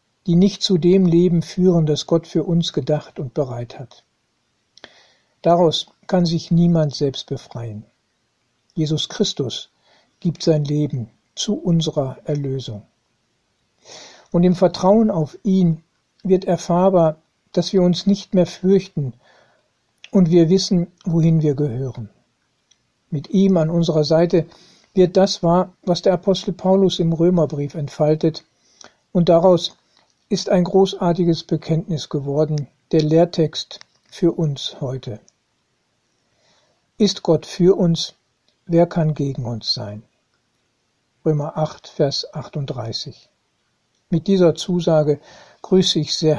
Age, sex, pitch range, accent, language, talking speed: 60-79, male, 145-180 Hz, German, German, 120 wpm